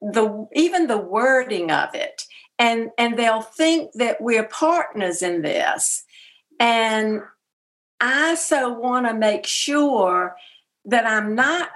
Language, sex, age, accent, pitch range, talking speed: English, female, 50-69, American, 205-295 Hz, 130 wpm